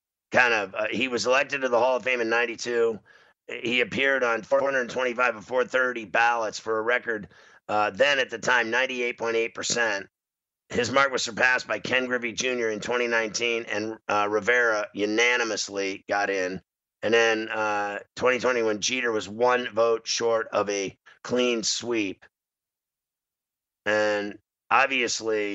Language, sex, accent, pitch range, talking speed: English, male, American, 110-130 Hz, 145 wpm